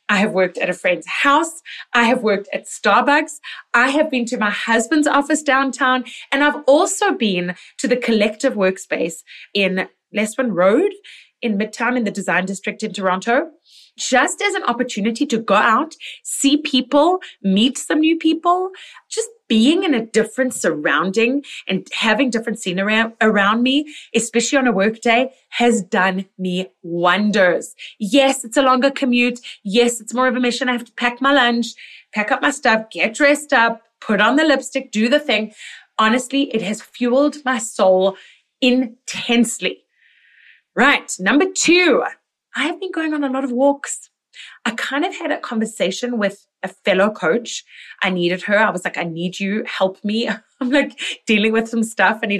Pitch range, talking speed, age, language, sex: 205-275 Hz, 175 wpm, 20-39, English, female